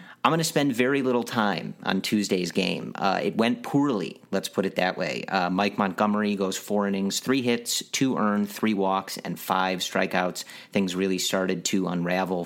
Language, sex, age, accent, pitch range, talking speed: English, male, 40-59, American, 95-120 Hz, 190 wpm